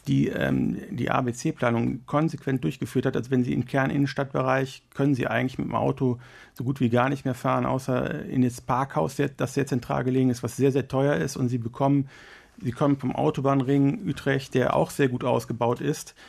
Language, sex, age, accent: German, male, 50-69, German